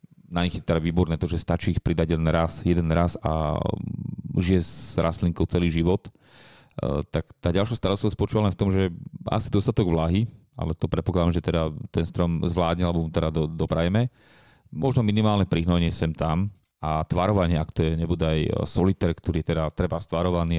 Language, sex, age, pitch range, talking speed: Slovak, male, 30-49, 80-95 Hz, 185 wpm